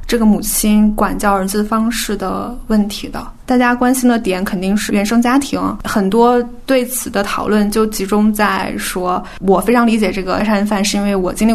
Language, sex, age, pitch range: Chinese, female, 20-39, 195-235 Hz